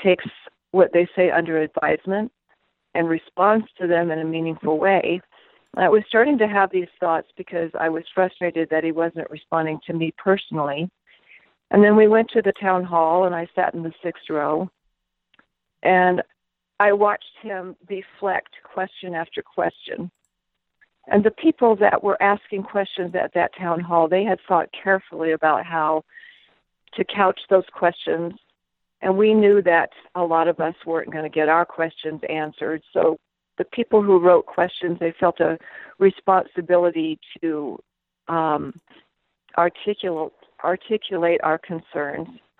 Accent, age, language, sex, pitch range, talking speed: American, 50-69, English, female, 165-200 Hz, 150 wpm